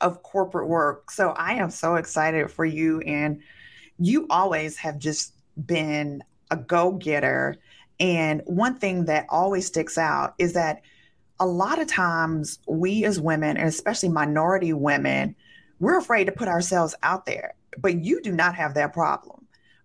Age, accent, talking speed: 30-49, American, 160 wpm